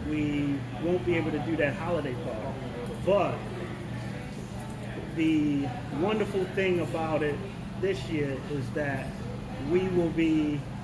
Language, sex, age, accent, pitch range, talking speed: English, male, 30-49, American, 140-170 Hz, 120 wpm